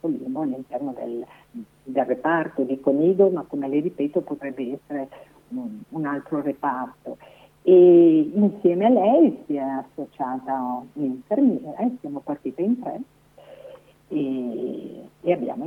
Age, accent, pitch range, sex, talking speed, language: 50-69, native, 140-195 Hz, female, 120 wpm, Italian